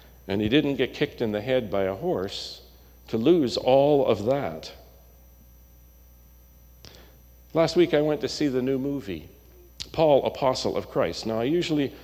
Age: 50-69